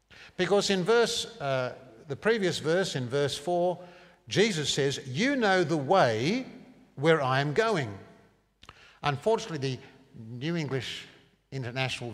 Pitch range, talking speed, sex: 120-180 Hz, 125 wpm, male